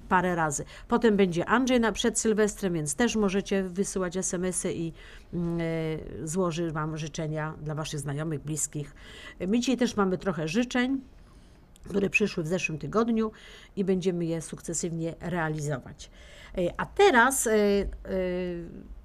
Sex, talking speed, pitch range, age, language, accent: female, 130 wpm, 175-220 Hz, 50-69, Polish, native